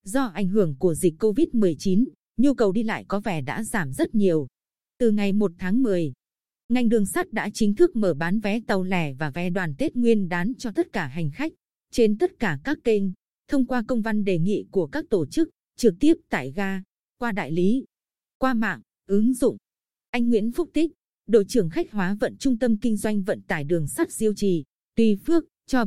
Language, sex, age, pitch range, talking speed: Vietnamese, female, 20-39, 190-235 Hz, 210 wpm